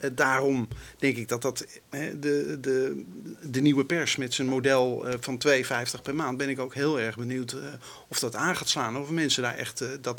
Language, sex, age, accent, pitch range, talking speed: Dutch, male, 50-69, Dutch, 125-145 Hz, 225 wpm